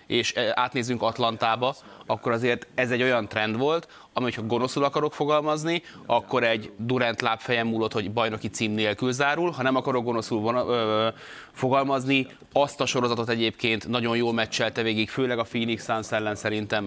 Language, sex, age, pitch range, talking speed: Hungarian, male, 20-39, 110-125 Hz, 160 wpm